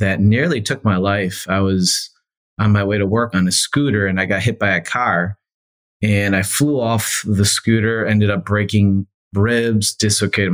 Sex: male